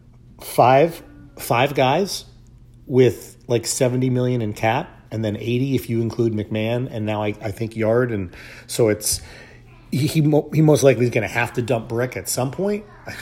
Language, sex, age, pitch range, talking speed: English, male, 40-59, 110-130 Hz, 175 wpm